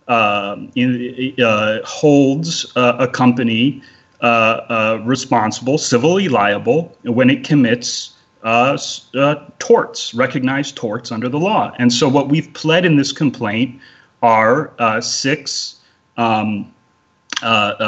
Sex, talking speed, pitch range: male, 120 wpm, 120-145 Hz